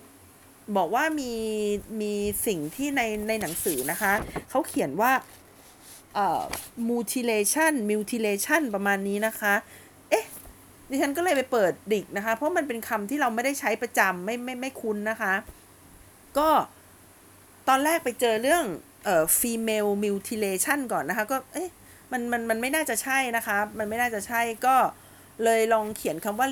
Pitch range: 205-260 Hz